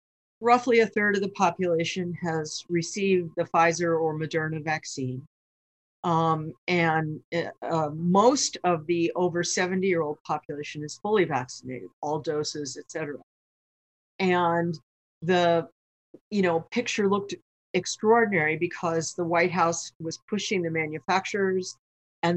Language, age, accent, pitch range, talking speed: English, 50-69, American, 155-185 Hz, 120 wpm